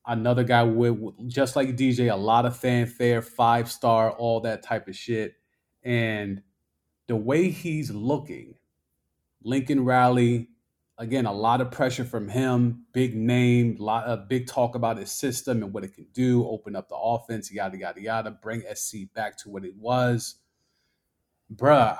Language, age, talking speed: English, 30-49, 165 wpm